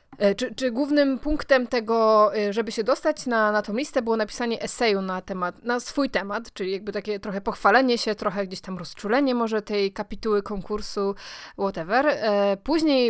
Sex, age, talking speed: female, 20-39, 165 wpm